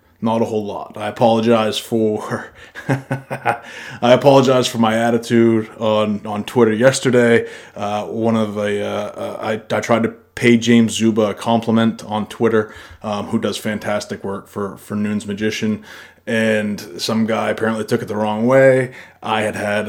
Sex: male